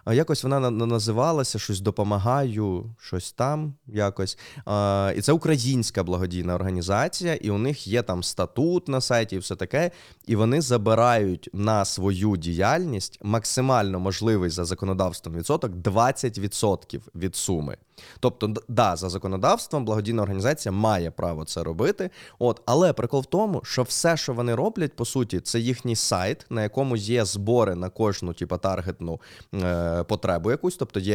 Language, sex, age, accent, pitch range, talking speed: Ukrainian, male, 20-39, native, 95-130 Hz, 145 wpm